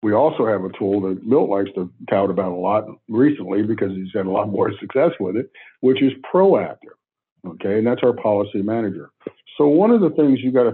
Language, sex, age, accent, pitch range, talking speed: English, male, 60-79, American, 105-130 Hz, 225 wpm